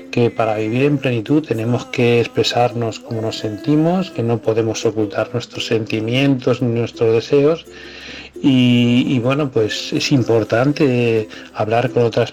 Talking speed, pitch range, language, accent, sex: 140 wpm, 110-135 Hz, Spanish, Spanish, male